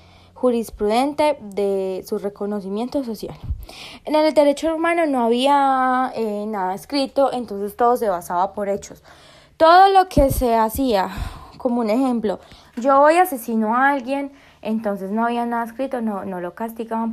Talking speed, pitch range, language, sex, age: 150 wpm, 205-270 Hz, Spanish, female, 20-39